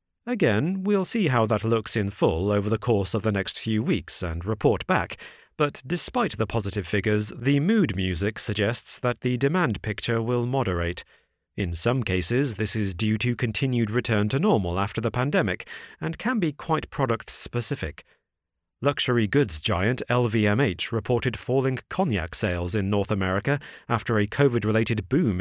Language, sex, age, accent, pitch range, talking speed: English, male, 40-59, British, 100-130 Hz, 160 wpm